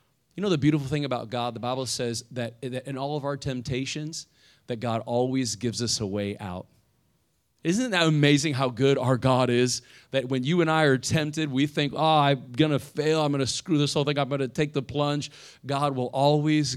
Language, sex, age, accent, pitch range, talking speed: English, male, 30-49, American, 125-150 Hz, 220 wpm